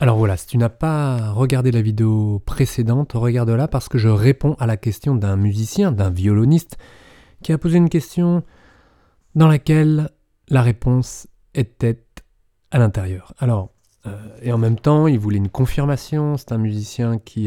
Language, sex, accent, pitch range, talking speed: French, male, French, 105-130 Hz, 165 wpm